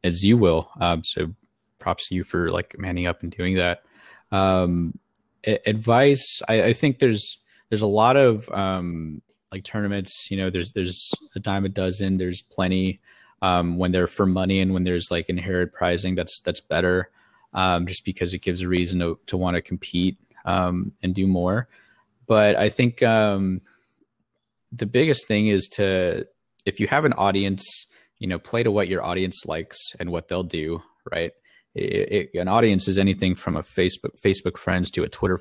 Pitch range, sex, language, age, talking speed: 90-100 Hz, male, English, 20-39, 185 wpm